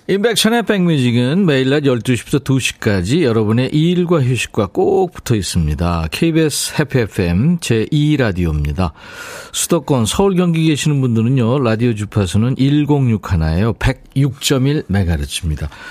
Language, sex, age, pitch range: Korean, male, 40-59, 105-155 Hz